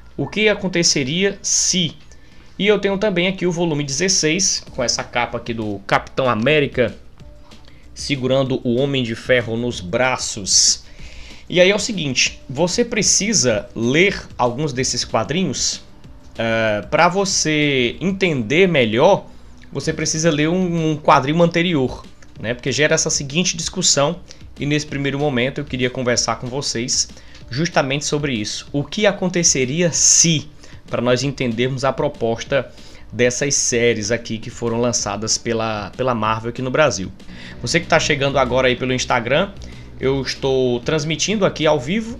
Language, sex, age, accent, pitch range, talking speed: Portuguese, male, 20-39, Brazilian, 120-170 Hz, 145 wpm